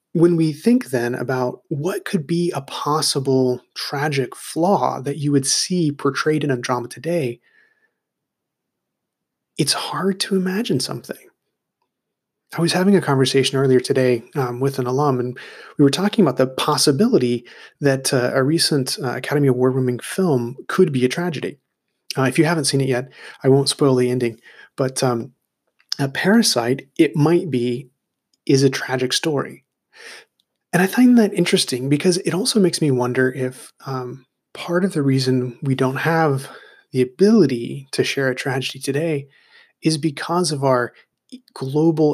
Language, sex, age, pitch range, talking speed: English, male, 30-49, 130-165 Hz, 160 wpm